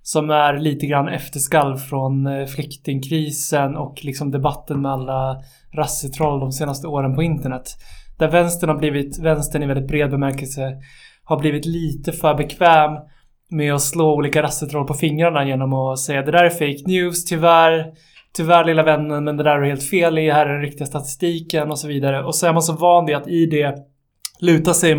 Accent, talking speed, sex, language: native, 190 wpm, male, Swedish